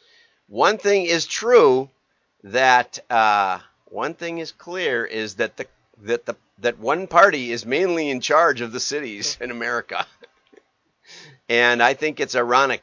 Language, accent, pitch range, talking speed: English, American, 120-180 Hz, 150 wpm